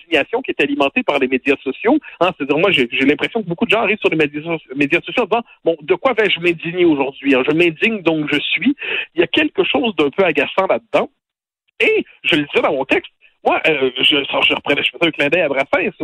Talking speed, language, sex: 245 wpm, French, male